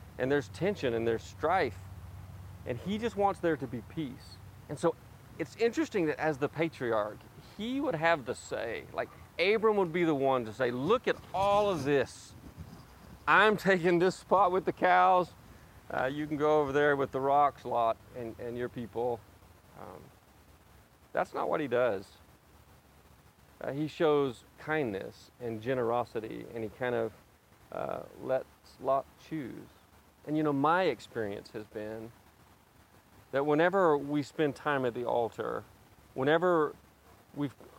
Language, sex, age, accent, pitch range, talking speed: English, male, 40-59, American, 110-155 Hz, 155 wpm